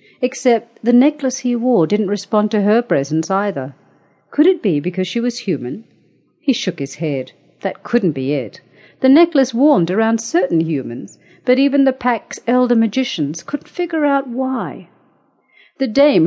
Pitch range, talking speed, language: 155-220 Hz, 160 wpm, English